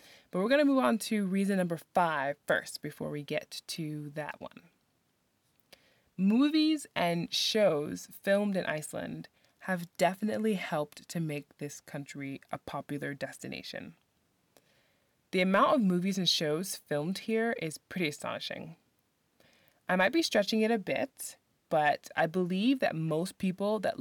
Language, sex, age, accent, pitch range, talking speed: English, female, 20-39, American, 160-215 Hz, 145 wpm